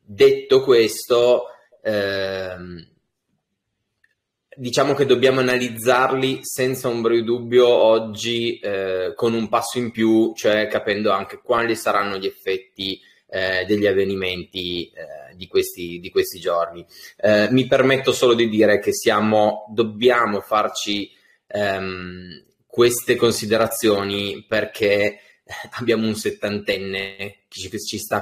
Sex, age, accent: male, 20-39, native